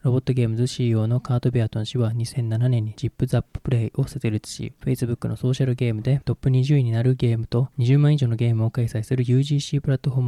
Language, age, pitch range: Japanese, 20-39, 115-130 Hz